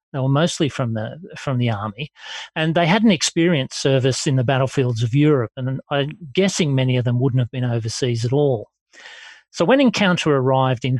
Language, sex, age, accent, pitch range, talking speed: English, male, 40-59, Australian, 130-160 Hz, 195 wpm